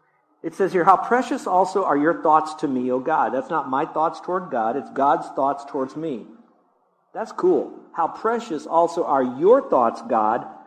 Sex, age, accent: male, 50-69, American